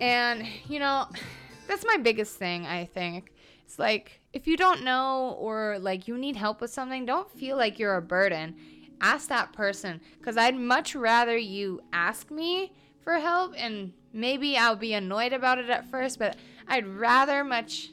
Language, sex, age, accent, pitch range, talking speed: English, female, 20-39, American, 195-255 Hz, 175 wpm